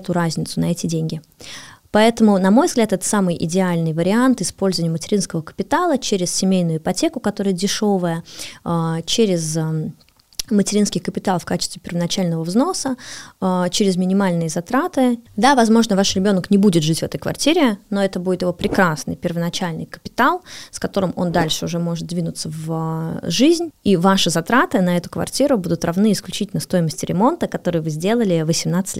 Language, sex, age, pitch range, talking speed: Russian, female, 20-39, 170-210 Hz, 150 wpm